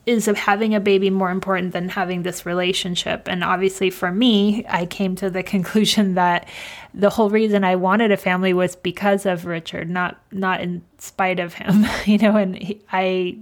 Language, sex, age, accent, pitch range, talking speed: English, female, 20-39, American, 180-200 Hz, 190 wpm